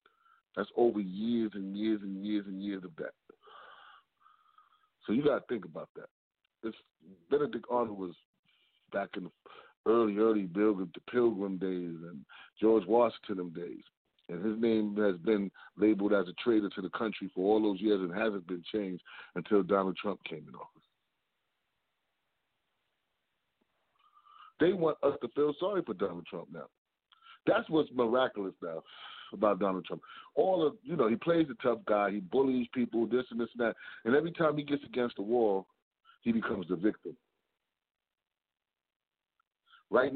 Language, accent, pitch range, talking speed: English, American, 100-150 Hz, 155 wpm